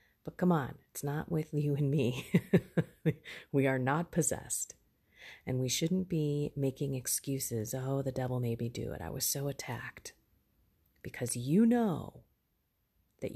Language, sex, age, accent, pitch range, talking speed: English, female, 40-59, American, 120-170 Hz, 155 wpm